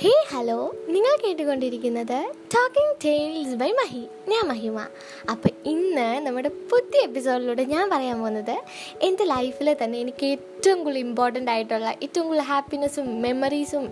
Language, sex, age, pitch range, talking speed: Malayalam, female, 10-29, 245-340 Hz, 130 wpm